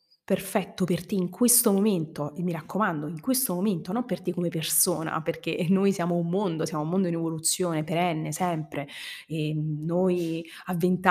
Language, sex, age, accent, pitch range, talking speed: Italian, female, 20-39, native, 165-195 Hz, 180 wpm